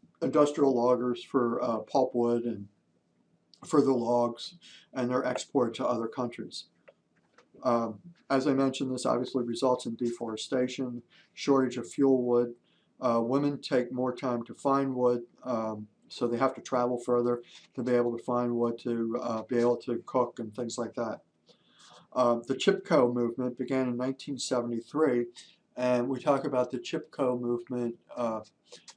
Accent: American